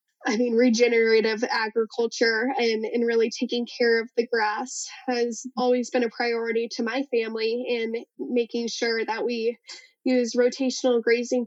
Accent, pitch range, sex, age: American, 225-255 Hz, female, 10-29